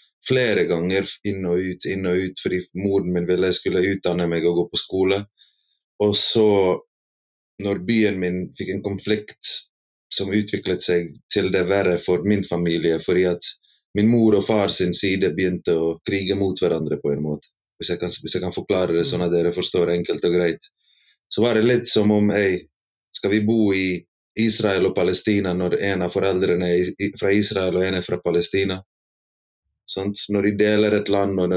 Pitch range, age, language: 85-100 Hz, 30-49, English